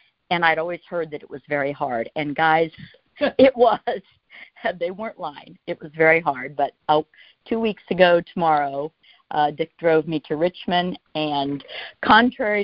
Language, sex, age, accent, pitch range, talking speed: English, female, 50-69, American, 145-180 Hz, 155 wpm